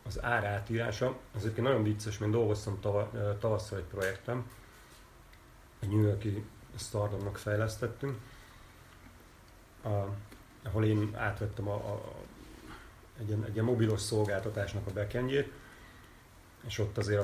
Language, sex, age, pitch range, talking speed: Hungarian, male, 30-49, 100-115 Hz, 120 wpm